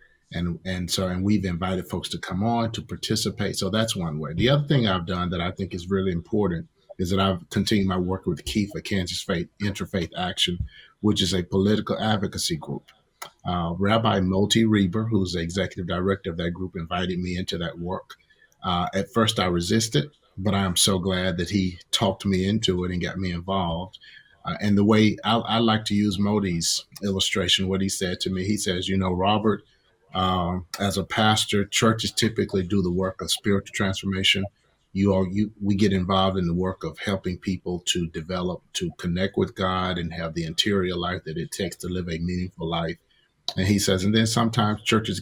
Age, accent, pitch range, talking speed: 30-49, American, 90-100 Hz, 205 wpm